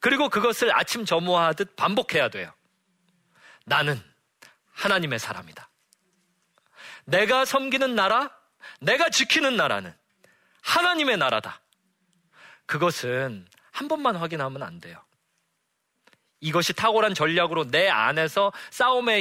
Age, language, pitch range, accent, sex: 40-59, Korean, 150-225 Hz, native, male